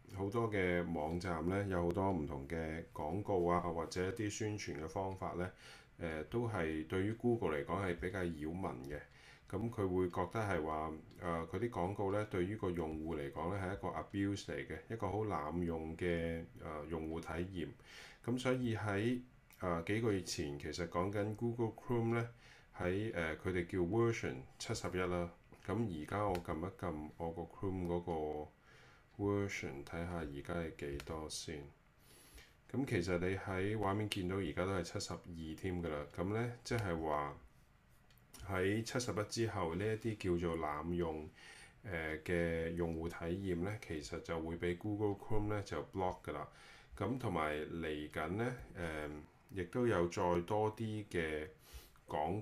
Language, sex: Chinese, male